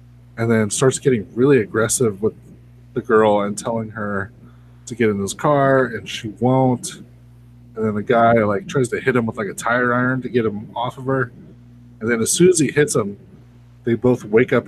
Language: English